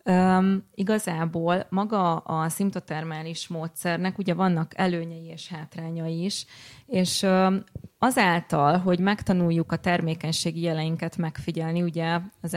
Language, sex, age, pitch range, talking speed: Hungarian, female, 20-39, 165-185 Hz, 100 wpm